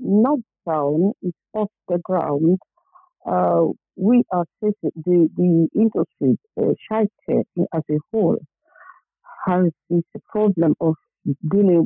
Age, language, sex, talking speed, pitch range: 50-69, English, female, 125 wpm, 160-210 Hz